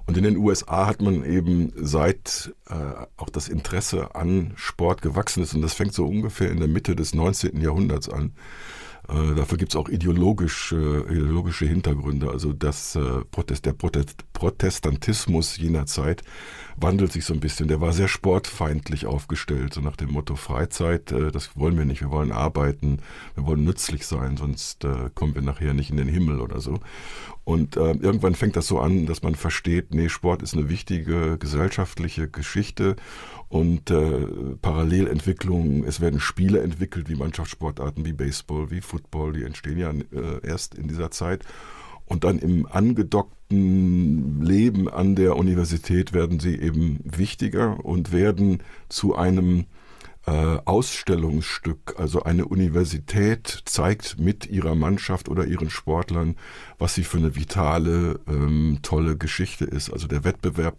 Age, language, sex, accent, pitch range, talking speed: 50-69, German, male, German, 75-90 Hz, 155 wpm